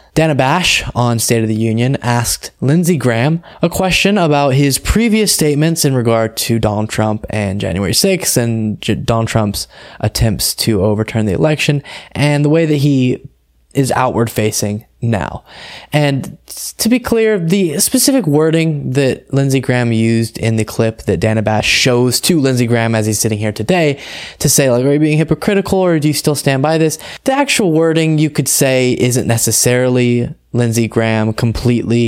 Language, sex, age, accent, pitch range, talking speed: English, male, 20-39, American, 110-150 Hz, 175 wpm